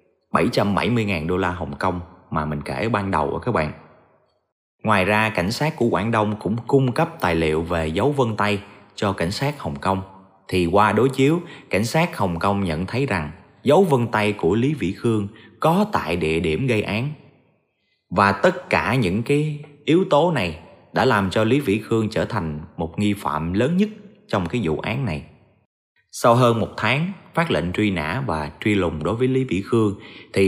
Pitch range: 90-140 Hz